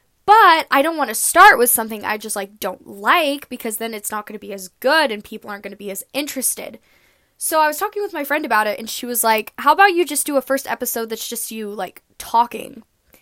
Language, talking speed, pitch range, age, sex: English, 255 wpm, 210-270 Hz, 10-29, female